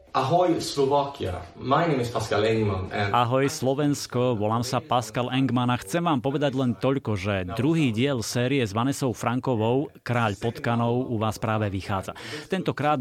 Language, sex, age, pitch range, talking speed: Slovak, male, 30-49, 110-130 Hz, 120 wpm